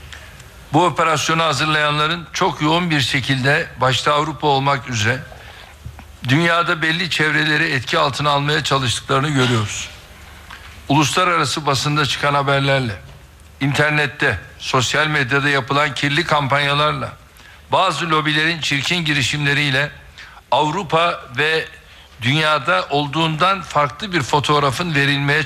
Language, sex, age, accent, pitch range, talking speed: Turkish, male, 60-79, native, 125-155 Hz, 95 wpm